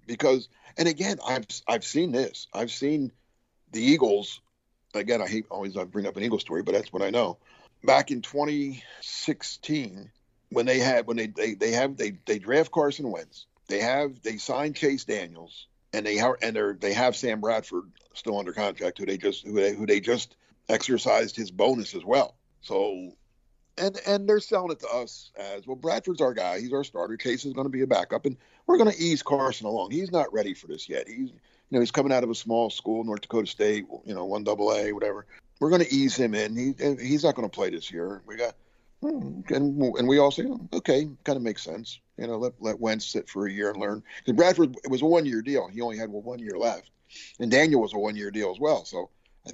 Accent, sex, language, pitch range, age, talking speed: American, male, English, 115-150 Hz, 50-69, 230 wpm